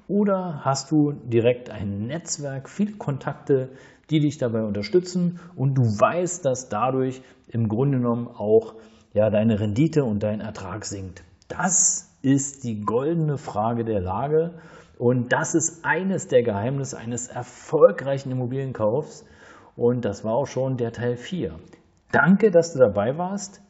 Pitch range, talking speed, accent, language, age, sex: 110-160 Hz, 140 wpm, German, German, 40-59, male